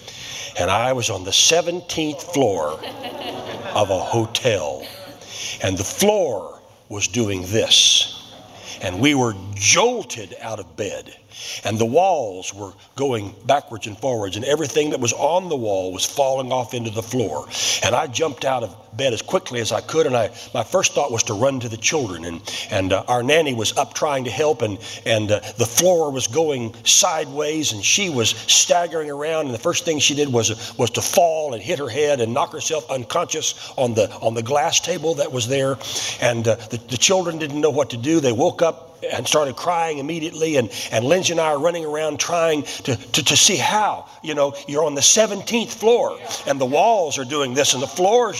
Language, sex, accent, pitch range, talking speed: English, male, American, 115-160 Hz, 205 wpm